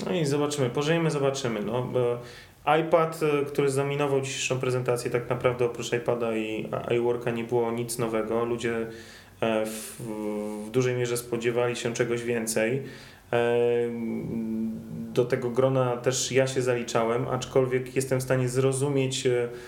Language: Polish